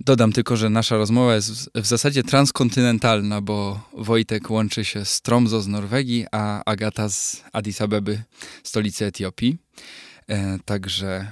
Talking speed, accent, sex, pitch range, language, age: 135 wpm, native, male, 105-130 Hz, Polish, 20-39